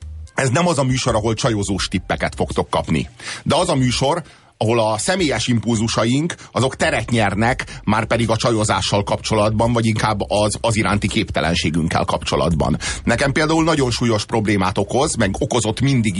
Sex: male